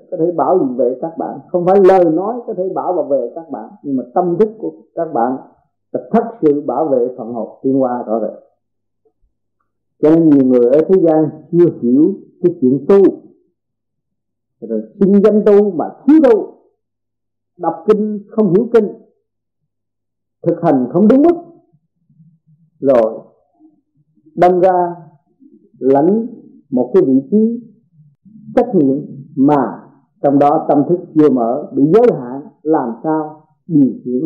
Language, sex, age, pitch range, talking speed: Vietnamese, male, 50-69, 140-220 Hz, 155 wpm